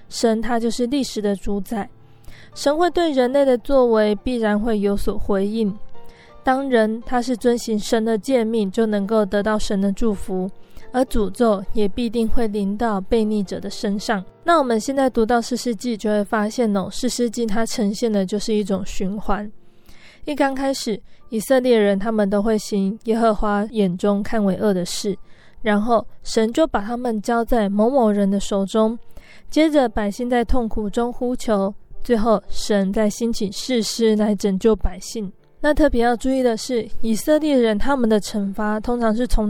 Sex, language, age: female, Chinese, 20-39